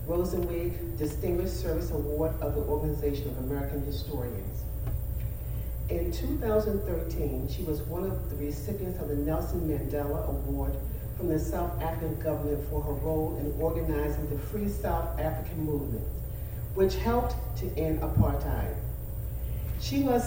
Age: 40-59